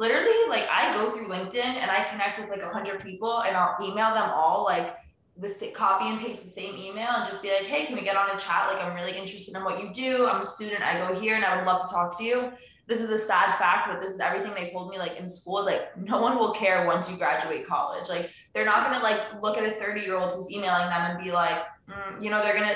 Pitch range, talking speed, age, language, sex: 180-215 Hz, 280 wpm, 20-39, English, female